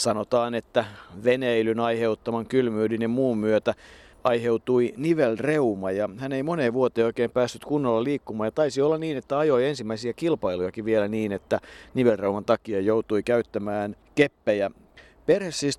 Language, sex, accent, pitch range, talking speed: Finnish, male, native, 110-130 Hz, 135 wpm